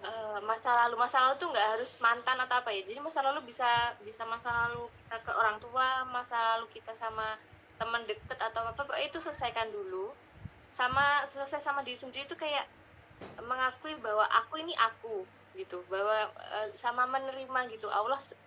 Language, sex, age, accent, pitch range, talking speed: Indonesian, female, 20-39, native, 215-265 Hz, 165 wpm